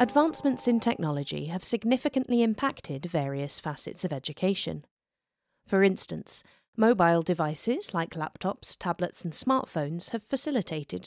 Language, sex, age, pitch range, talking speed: English, female, 30-49, 155-210 Hz, 115 wpm